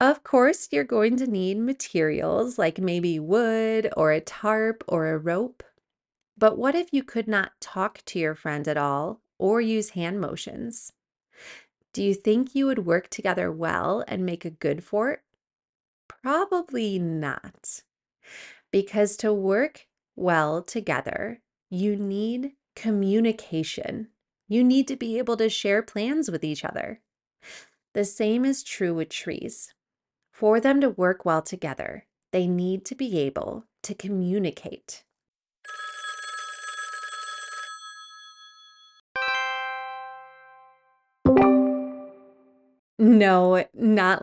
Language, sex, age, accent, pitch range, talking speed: English, female, 30-49, American, 180-255 Hz, 120 wpm